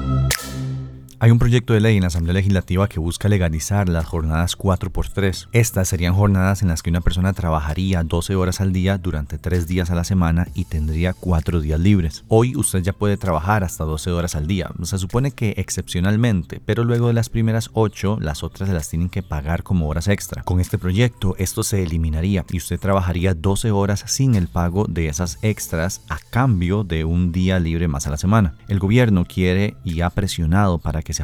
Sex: male